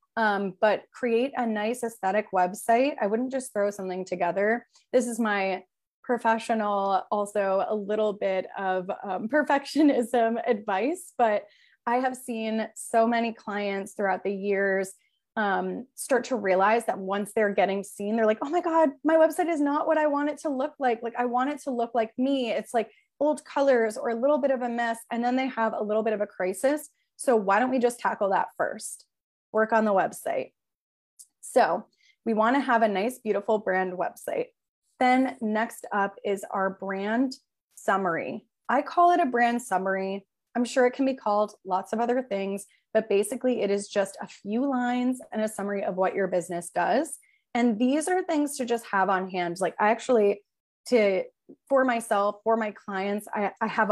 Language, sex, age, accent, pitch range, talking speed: English, female, 20-39, American, 200-255 Hz, 190 wpm